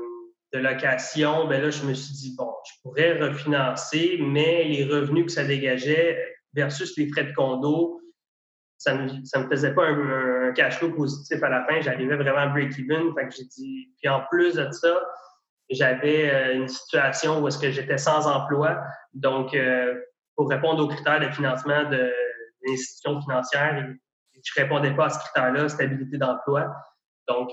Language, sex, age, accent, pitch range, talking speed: French, male, 20-39, Canadian, 130-155 Hz, 175 wpm